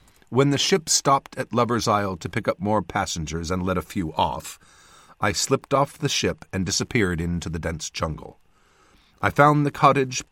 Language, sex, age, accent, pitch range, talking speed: English, male, 50-69, American, 95-130 Hz, 185 wpm